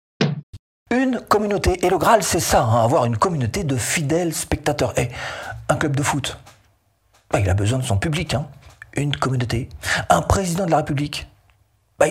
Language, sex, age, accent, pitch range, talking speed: French, male, 40-59, French, 105-160 Hz, 170 wpm